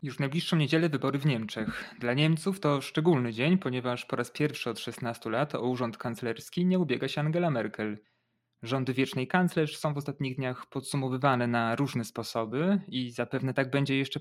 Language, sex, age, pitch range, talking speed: Polish, male, 30-49, 120-145 Hz, 175 wpm